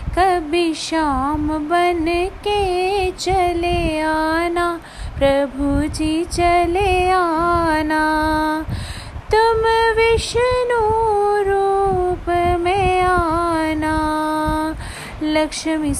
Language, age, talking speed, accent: Hindi, 30-49, 60 wpm, native